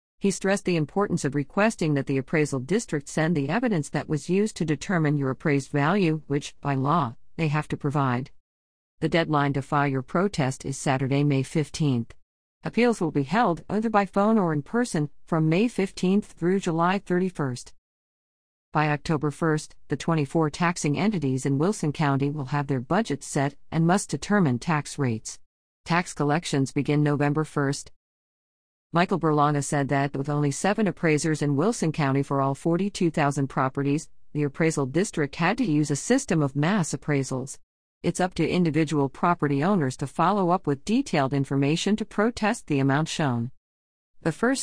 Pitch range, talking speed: 140-190 Hz, 165 wpm